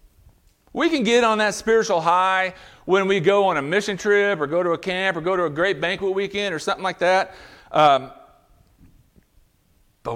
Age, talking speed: 40-59, 190 wpm